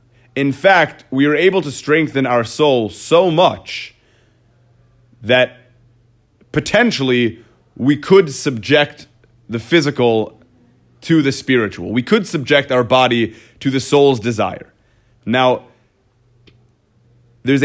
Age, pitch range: 30-49, 115-140 Hz